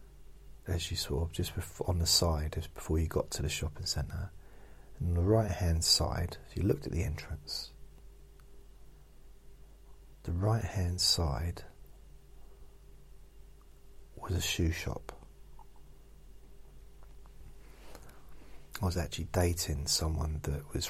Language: English